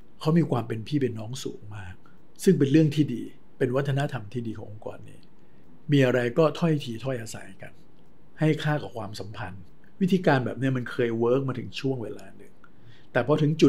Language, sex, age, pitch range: Thai, male, 60-79, 115-145 Hz